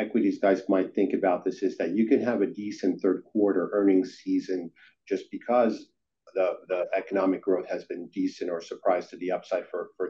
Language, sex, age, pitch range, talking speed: English, male, 50-69, 100-125 Hz, 195 wpm